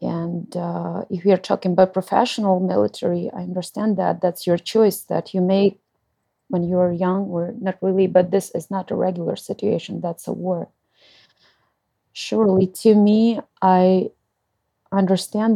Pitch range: 180-200 Hz